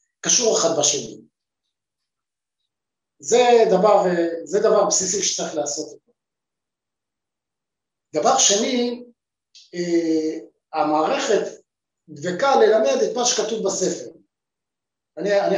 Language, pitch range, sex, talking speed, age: Hebrew, 190-265 Hz, male, 75 wpm, 50-69